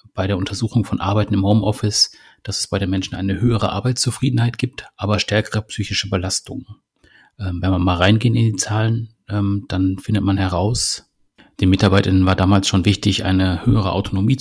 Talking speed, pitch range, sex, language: 165 wpm, 95-115 Hz, male, German